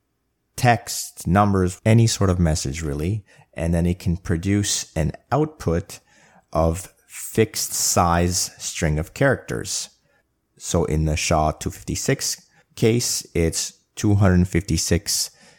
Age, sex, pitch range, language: 30-49, male, 85-105 Hz, English